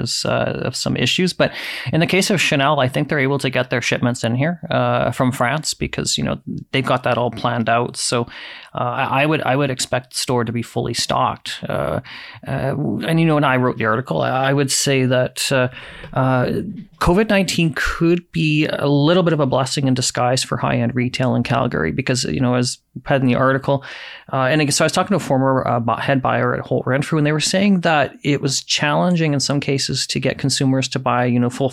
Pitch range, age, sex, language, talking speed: 125-150 Hz, 30-49, male, English, 225 wpm